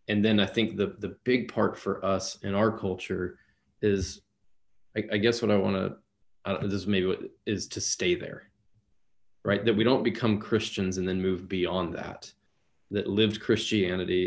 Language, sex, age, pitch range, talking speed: English, male, 20-39, 90-100 Hz, 180 wpm